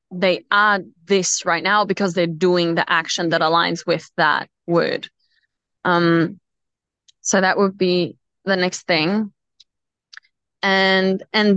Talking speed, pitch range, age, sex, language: 130 wpm, 175-210 Hz, 20-39, female, English